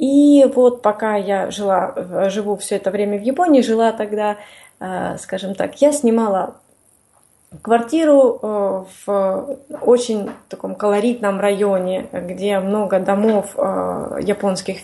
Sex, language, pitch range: female, Russian, 195-250 Hz